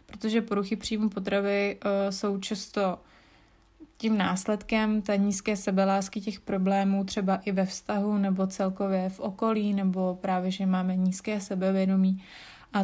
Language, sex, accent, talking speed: Czech, female, native, 130 wpm